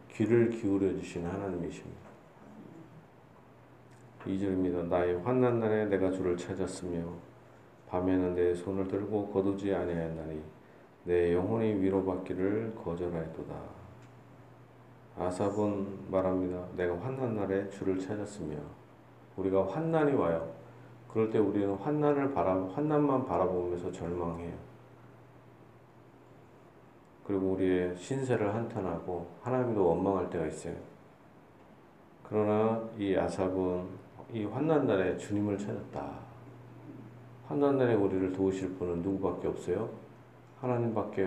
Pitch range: 90-120 Hz